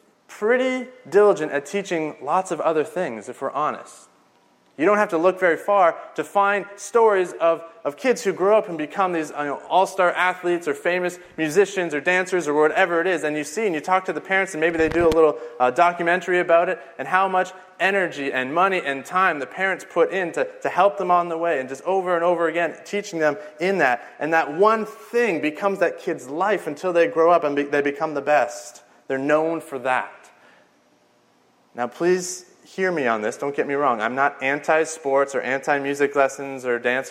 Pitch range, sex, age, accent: 145-185 Hz, male, 30-49, American